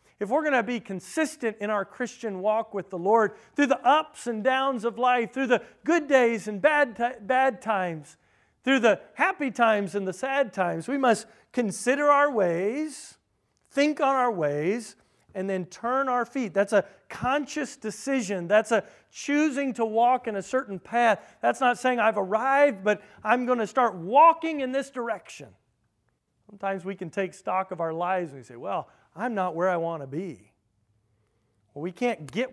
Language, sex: English, male